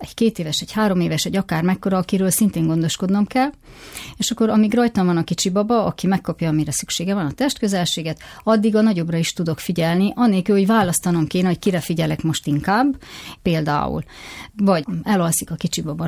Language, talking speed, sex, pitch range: Hungarian, 185 wpm, female, 160-205 Hz